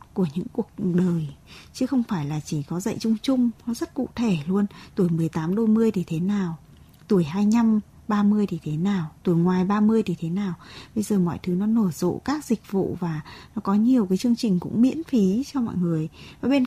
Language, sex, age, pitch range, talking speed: Vietnamese, female, 20-39, 190-255 Hz, 225 wpm